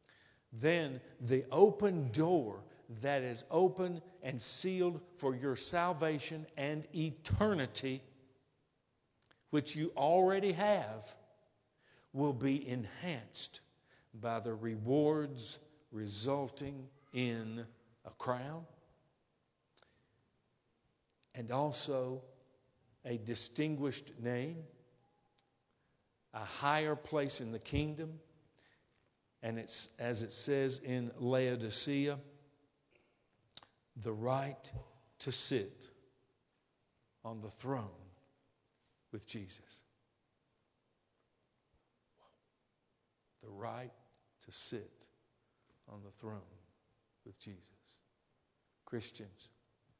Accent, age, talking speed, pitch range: American, 50-69, 80 wpm, 115-150 Hz